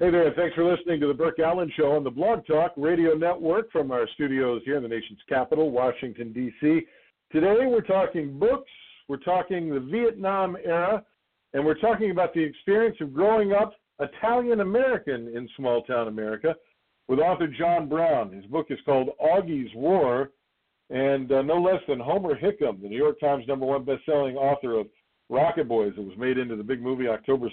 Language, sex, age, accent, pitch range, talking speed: English, male, 50-69, American, 130-175 Hz, 185 wpm